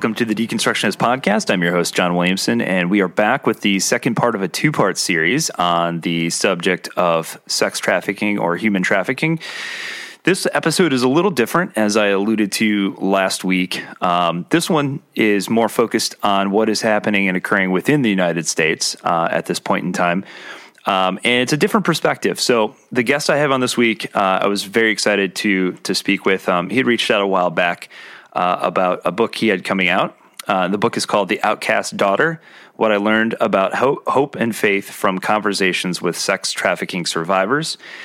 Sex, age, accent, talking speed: male, 30-49, American, 195 wpm